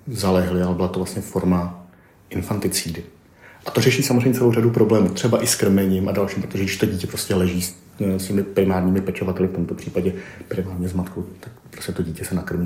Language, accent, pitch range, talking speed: Czech, native, 90-100 Hz, 200 wpm